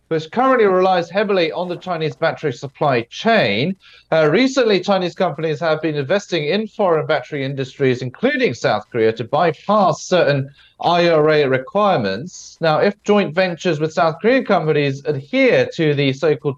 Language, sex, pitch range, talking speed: English, male, 140-180 Hz, 150 wpm